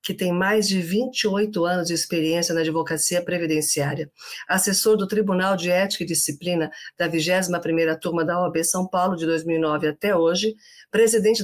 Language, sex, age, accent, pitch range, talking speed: Portuguese, female, 50-69, Brazilian, 165-200 Hz, 155 wpm